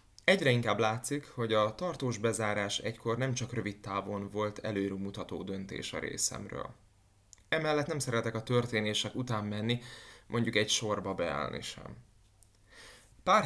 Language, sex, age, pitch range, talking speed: Hungarian, male, 20-39, 105-125 Hz, 140 wpm